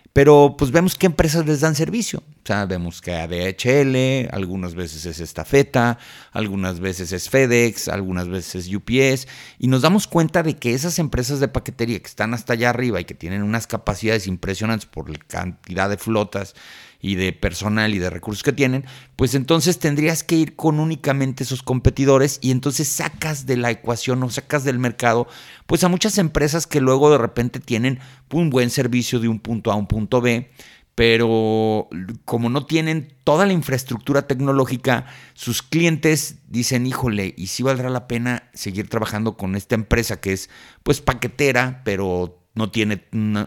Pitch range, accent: 105-140 Hz, Mexican